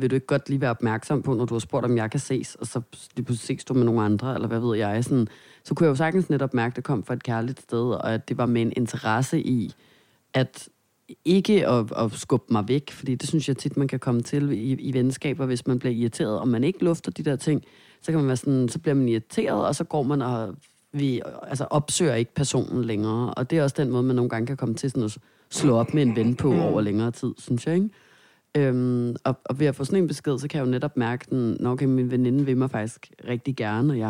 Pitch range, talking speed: 115-145 Hz, 270 wpm